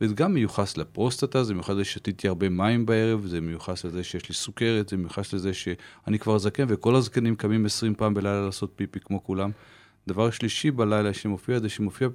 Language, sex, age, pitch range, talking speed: Hebrew, male, 40-59, 95-115 Hz, 195 wpm